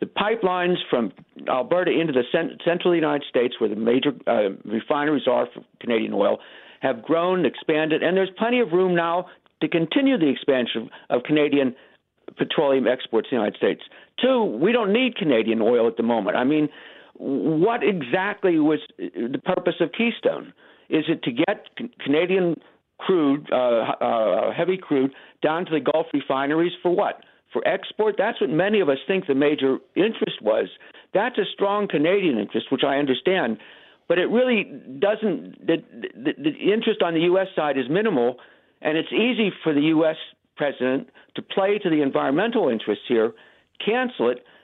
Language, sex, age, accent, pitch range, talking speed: English, male, 60-79, American, 145-205 Hz, 165 wpm